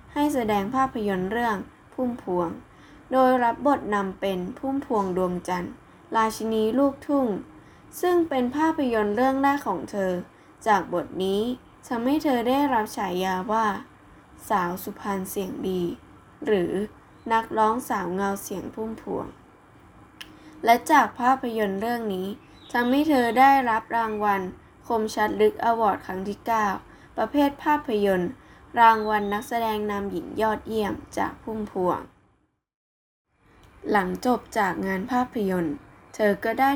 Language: Thai